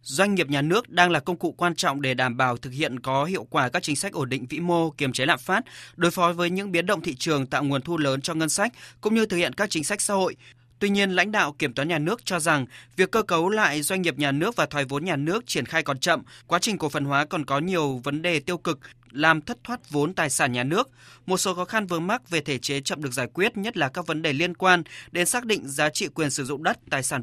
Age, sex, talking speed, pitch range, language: 20-39, male, 290 wpm, 140-180 Hz, Vietnamese